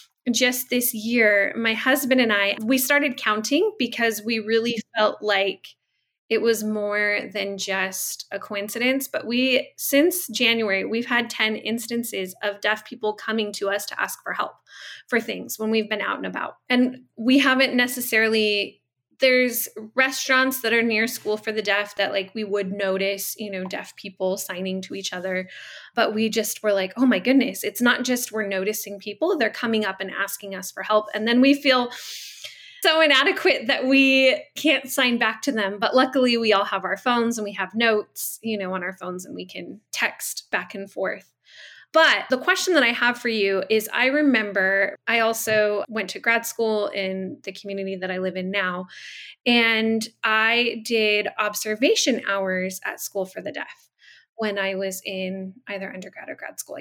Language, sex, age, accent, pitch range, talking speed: English, female, 20-39, American, 200-245 Hz, 185 wpm